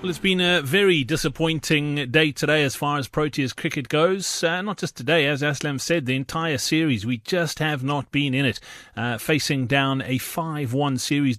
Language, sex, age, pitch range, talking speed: English, male, 30-49, 130-170 Hz, 200 wpm